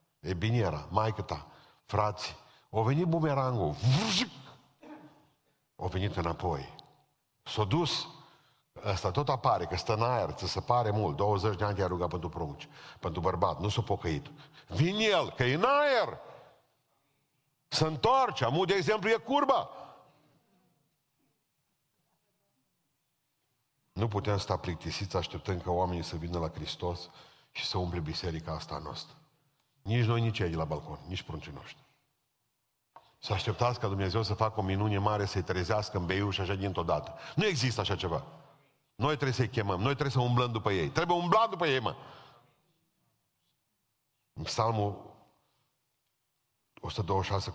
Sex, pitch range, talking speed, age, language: male, 90-135 Hz, 140 wpm, 50-69, Romanian